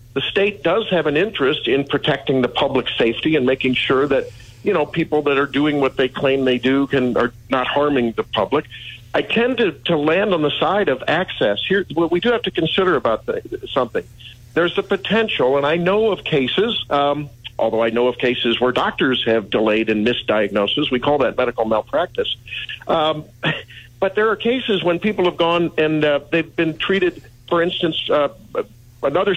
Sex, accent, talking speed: male, American, 200 wpm